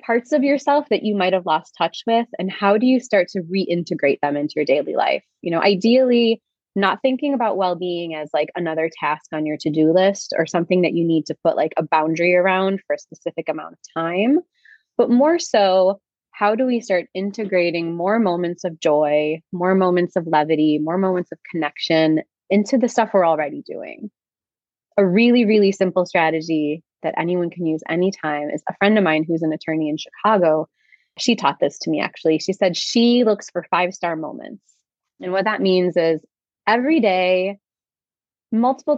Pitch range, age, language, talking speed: 165-215 Hz, 20-39, English, 190 wpm